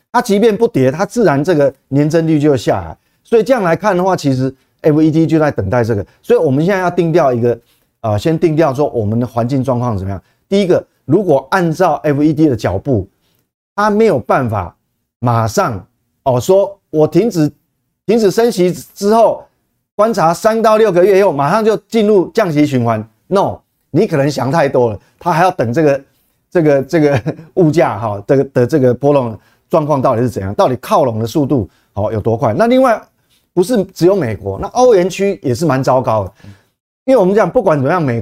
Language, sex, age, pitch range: Chinese, male, 30-49, 120-190 Hz